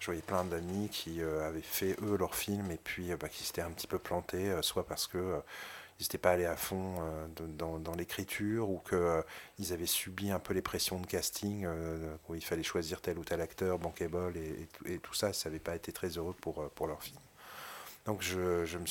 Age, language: 30-49, French